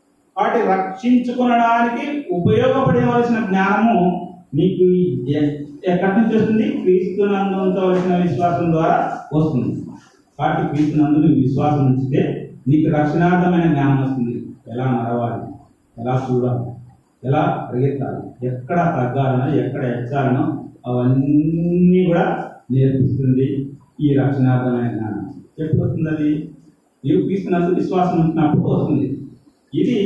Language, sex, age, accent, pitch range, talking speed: Telugu, male, 40-59, native, 140-190 Hz, 90 wpm